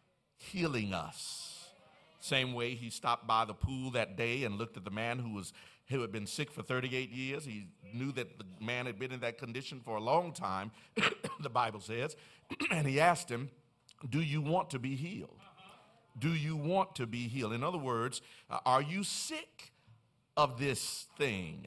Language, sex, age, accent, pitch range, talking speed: English, male, 50-69, American, 110-145 Hz, 185 wpm